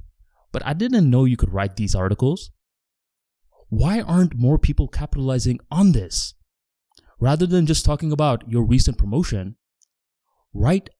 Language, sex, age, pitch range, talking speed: English, male, 20-39, 95-135 Hz, 135 wpm